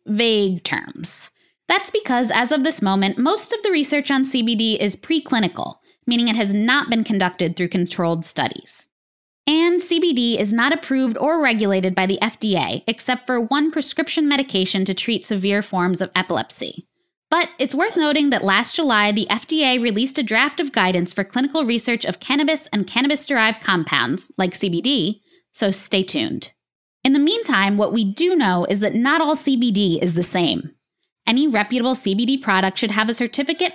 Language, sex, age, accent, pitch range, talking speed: English, female, 10-29, American, 190-270 Hz, 170 wpm